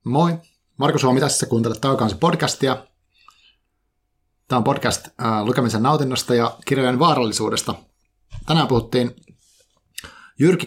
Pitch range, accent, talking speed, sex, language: 105-125 Hz, native, 105 wpm, male, Finnish